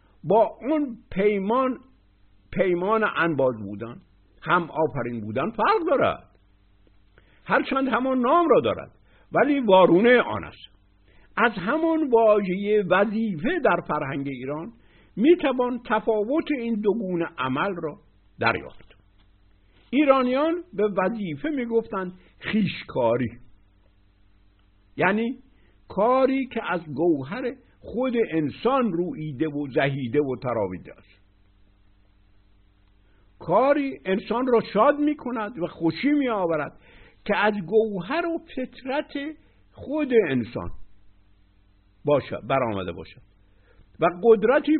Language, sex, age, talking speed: Persian, male, 60-79, 100 wpm